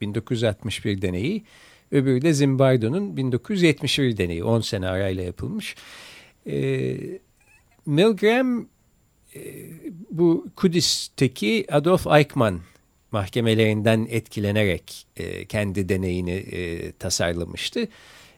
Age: 50-69